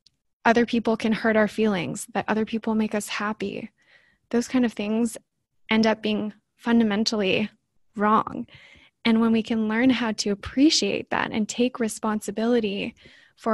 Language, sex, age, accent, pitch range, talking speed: English, female, 10-29, American, 205-230 Hz, 150 wpm